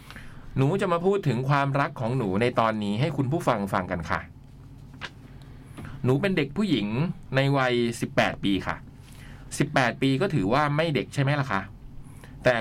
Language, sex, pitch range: Thai, male, 115-140 Hz